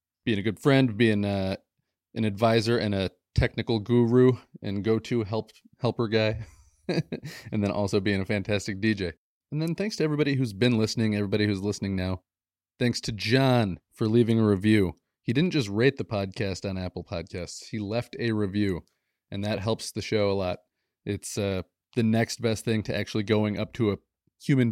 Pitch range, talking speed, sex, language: 100-120 Hz, 185 wpm, male, English